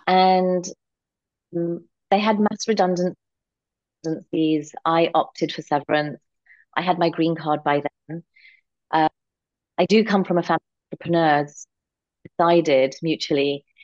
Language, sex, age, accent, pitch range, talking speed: English, female, 30-49, British, 155-185 Hz, 120 wpm